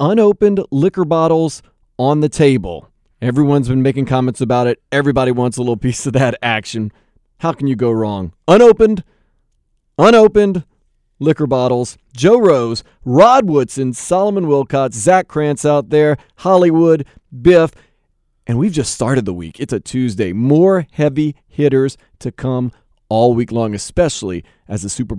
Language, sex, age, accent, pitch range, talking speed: English, male, 40-59, American, 115-155 Hz, 150 wpm